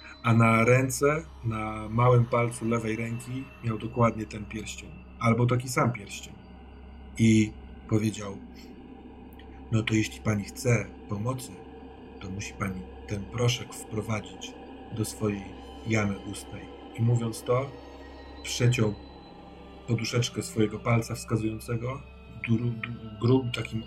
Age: 40-59